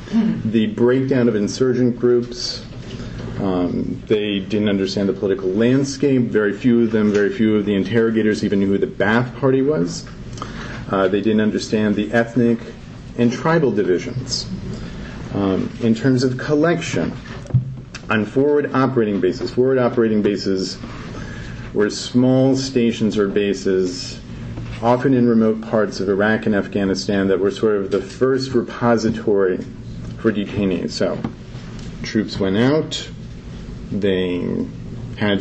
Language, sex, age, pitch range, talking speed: English, male, 40-59, 105-125 Hz, 130 wpm